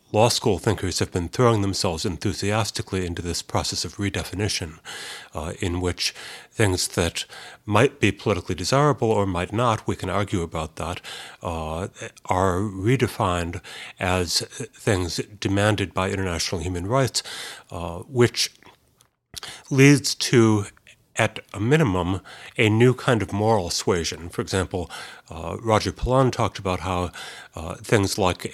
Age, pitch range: 60-79, 90-105 Hz